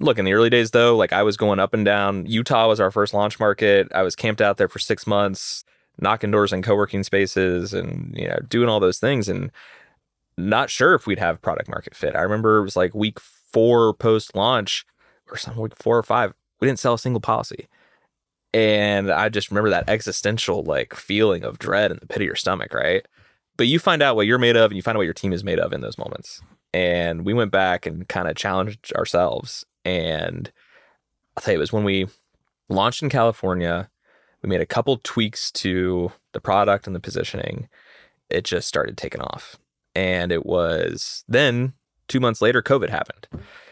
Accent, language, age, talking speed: American, English, 20-39, 210 wpm